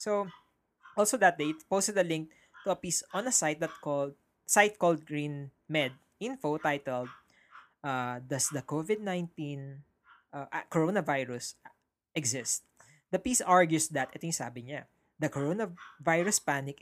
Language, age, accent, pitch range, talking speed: Filipino, 20-39, native, 140-175 Hz, 135 wpm